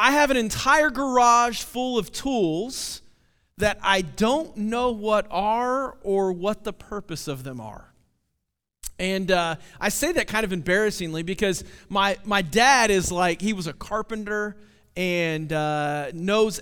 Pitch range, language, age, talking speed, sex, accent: 185-230 Hz, English, 40-59, 150 wpm, male, American